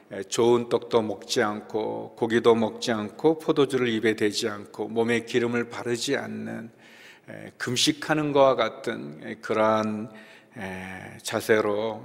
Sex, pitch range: male, 110-130 Hz